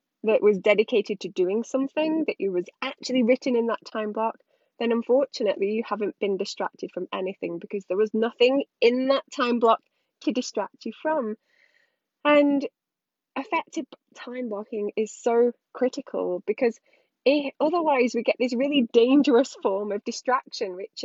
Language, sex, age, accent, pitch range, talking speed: English, female, 10-29, British, 205-270 Hz, 150 wpm